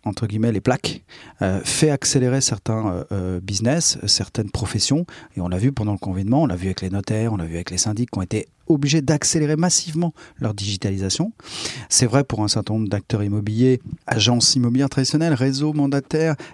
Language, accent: French, French